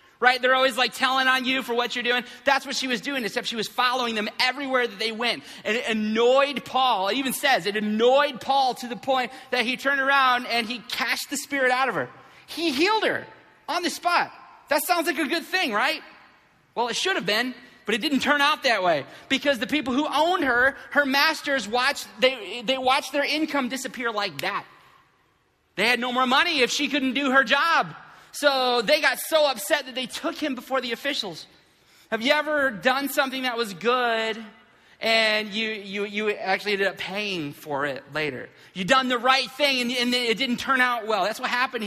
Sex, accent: male, American